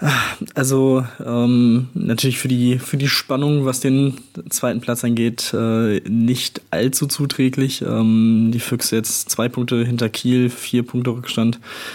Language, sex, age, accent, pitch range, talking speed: German, male, 20-39, German, 115-130 Hz, 140 wpm